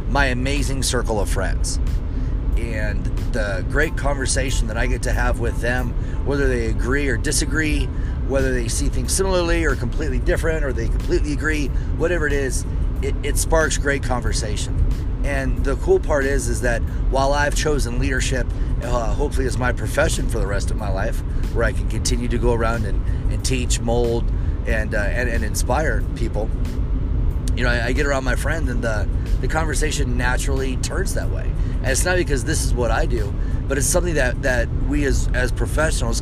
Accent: American